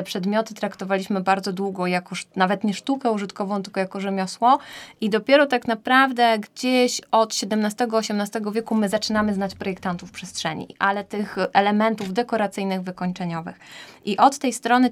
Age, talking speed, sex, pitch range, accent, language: 20-39, 135 wpm, female, 195-225 Hz, native, Polish